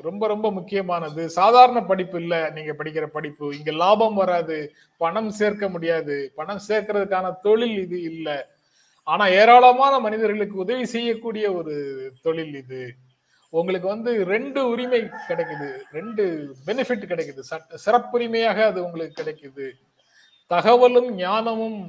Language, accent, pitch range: Tamil, native, 155-220 Hz